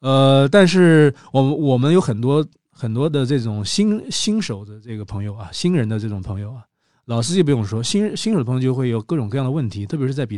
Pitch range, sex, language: 110-145 Hz, male, Chinese